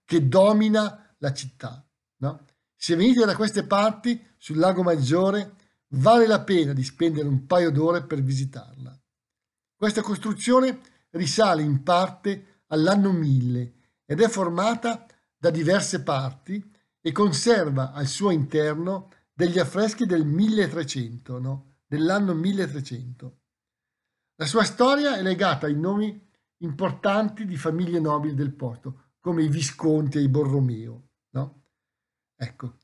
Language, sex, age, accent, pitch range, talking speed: Italian, male, 50-69, native, 135-210 Hz, 125 wpm